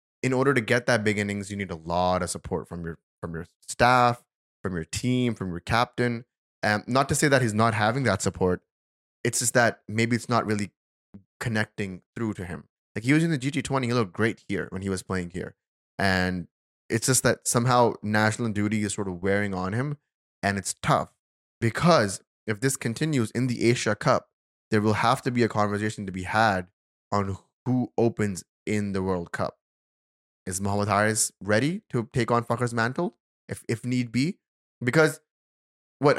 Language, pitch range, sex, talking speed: English, 95-120 Hz, male, 190 wpm